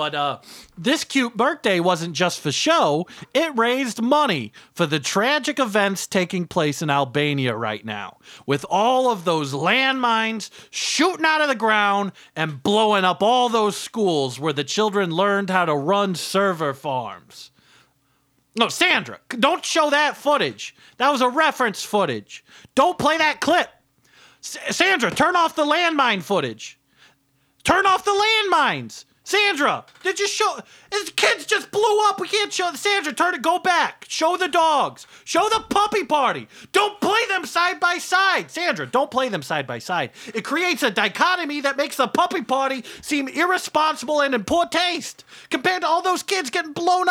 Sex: male